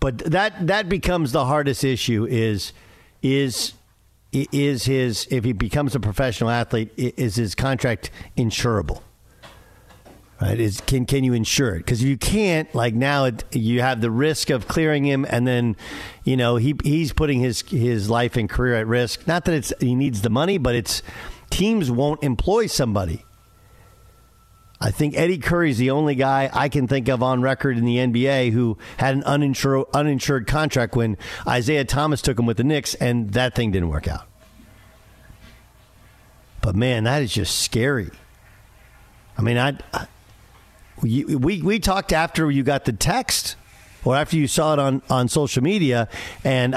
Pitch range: 110-140 Hz